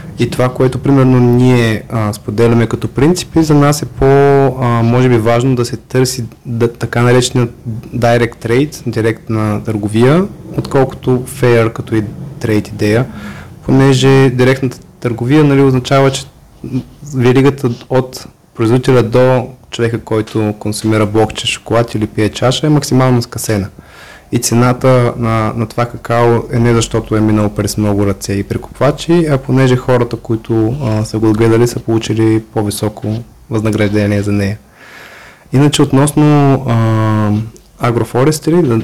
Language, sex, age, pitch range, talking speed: Bulgarian, male, 20-39, 110-130 Hz, 130 wpm